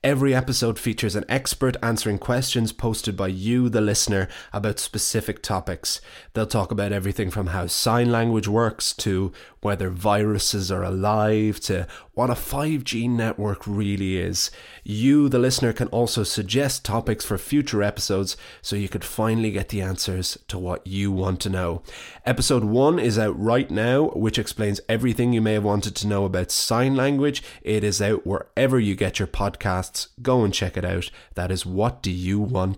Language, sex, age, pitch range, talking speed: English, male, 20-39, 95-115 Hz, 175 wpm